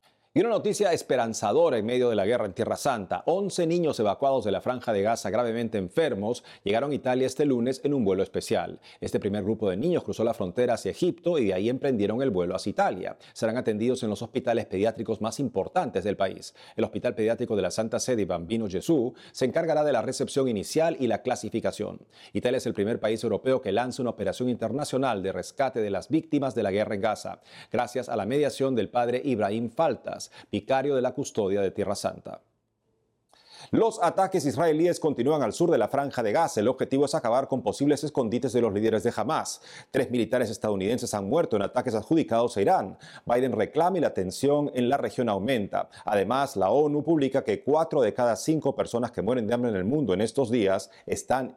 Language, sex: Spanish, male